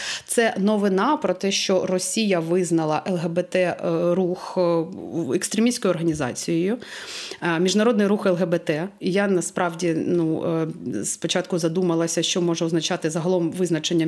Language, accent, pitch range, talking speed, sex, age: Ukrainian, native, 175-210 Hz, 100 wpm, female, 30-49